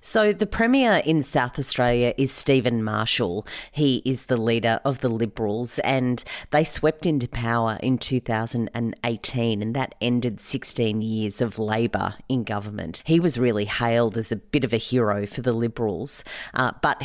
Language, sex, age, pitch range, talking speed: English, female, 30-49, 115-130 Hz, 165 wpm